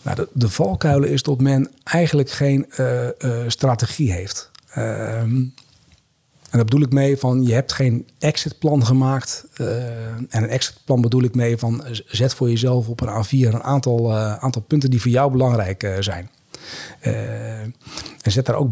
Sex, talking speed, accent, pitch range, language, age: male, 170 wpm, Dutch, 115-130 Hz, Dutch, 40-59